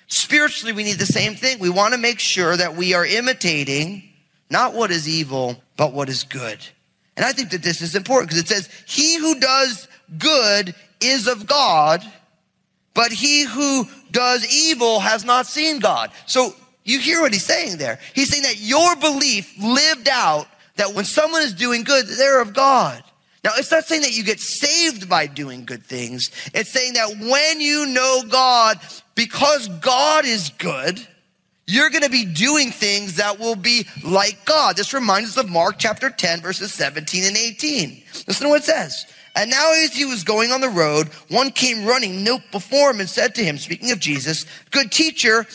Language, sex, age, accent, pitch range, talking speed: English, male, 30-49, American, 180-265 Hz, 190 wpm